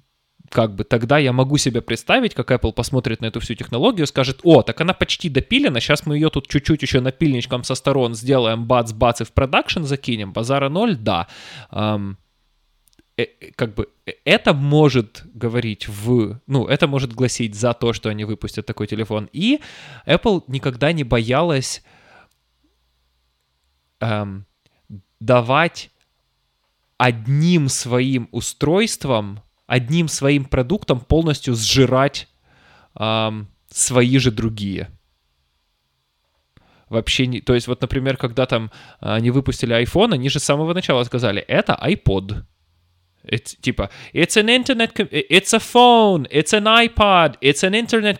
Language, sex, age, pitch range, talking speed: Russian, male, 20-39, 110-160 Hz, 280 wpm